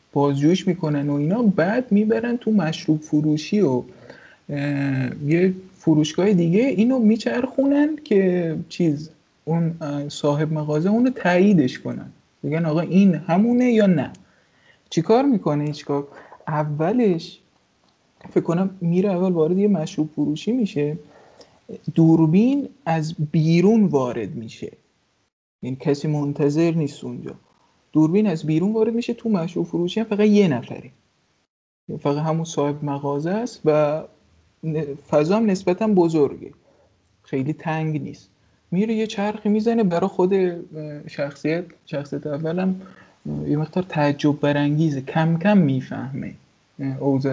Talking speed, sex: 120 wpm, male